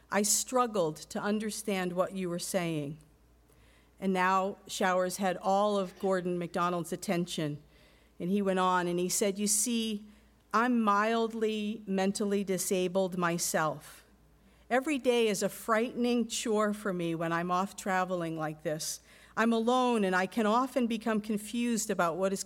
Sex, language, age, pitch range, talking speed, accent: female, English, 50-69, 185-225 Hz, 150 wpm, American